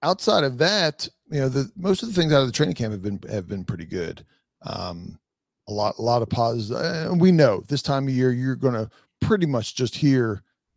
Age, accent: 40-59, American